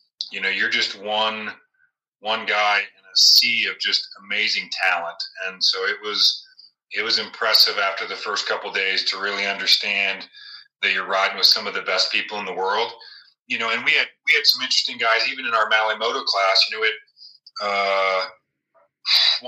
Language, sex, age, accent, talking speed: German, male, 30-49, American, 190 wpm